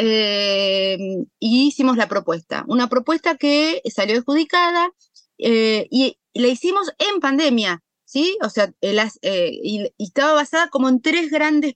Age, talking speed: 30-49, 155 wpm